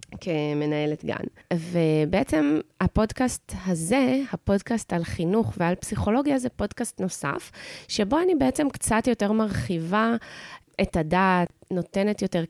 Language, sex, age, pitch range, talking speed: English, female, 20-39, 160-220 Hz, 110 wpm